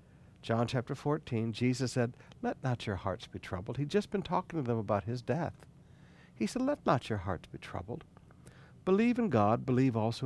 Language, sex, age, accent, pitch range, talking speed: English, male, 60-79, American, 115-145 Hz, 195 wpm